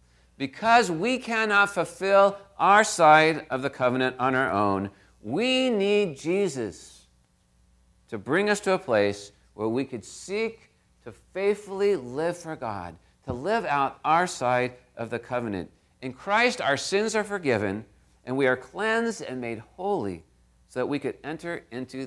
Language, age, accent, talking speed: English, 50-69, American, 155 wpm